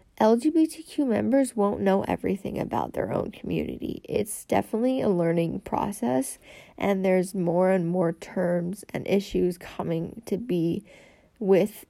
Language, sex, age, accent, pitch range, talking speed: English, female, 10-29, American, 180-225 Hz, 130 wpm